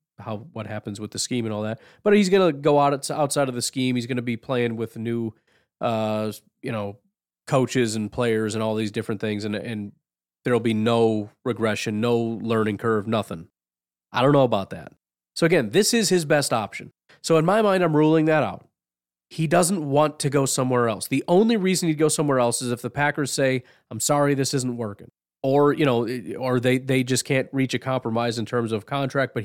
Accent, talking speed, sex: American, 220 wpm, male